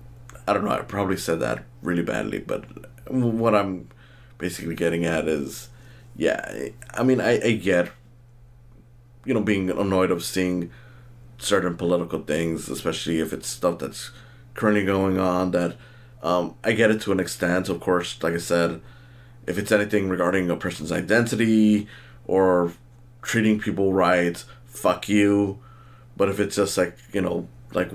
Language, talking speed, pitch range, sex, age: English, 155 wpm, 90-120 Hz, male, 20-39